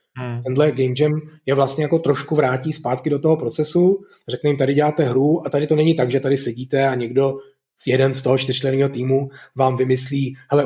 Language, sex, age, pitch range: Czech, male, 30-49, 130-145 Hz